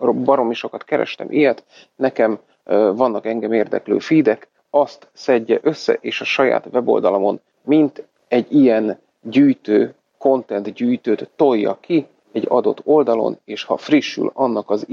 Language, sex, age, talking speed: Hungarian, male, 40-59, 135 wpm